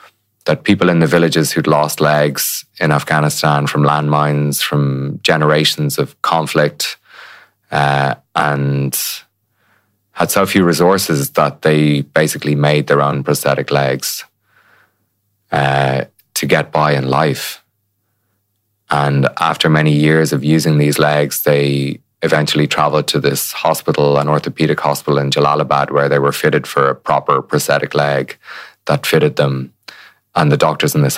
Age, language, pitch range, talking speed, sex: 20-39, English, 70-75 Hz, 140 wpm, male